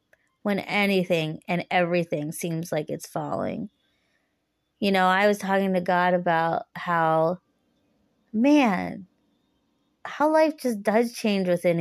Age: 30-49